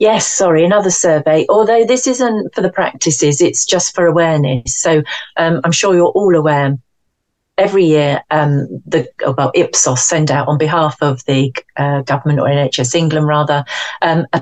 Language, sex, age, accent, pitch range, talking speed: English, female, 40-59, British, 150-190 Hz, 160 wpm